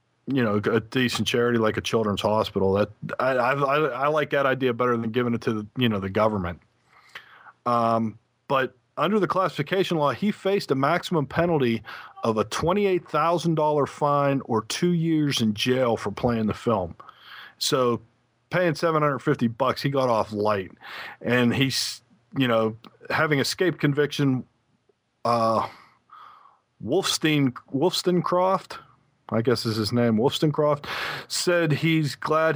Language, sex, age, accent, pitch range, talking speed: English, male, 40-59, American, 120-160 Hz, 150 wpm